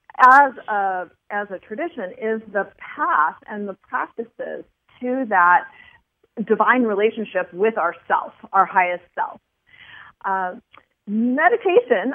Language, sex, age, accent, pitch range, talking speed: English, female, 40-59, American, 190-250 Hz, 110 wpm